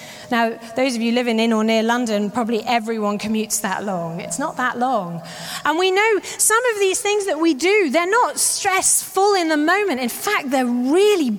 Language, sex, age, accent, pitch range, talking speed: English, female, 30-49, British, 235-325 Hz, 200 wpm